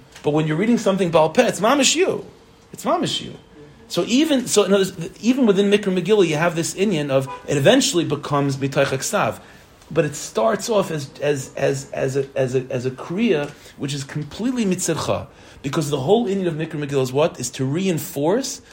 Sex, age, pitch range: male, 40-59, 130-175 Hz